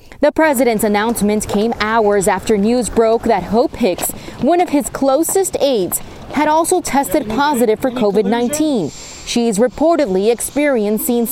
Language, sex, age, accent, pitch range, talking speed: English, female, 20-39, American, 215-270 Hz, 135 wpm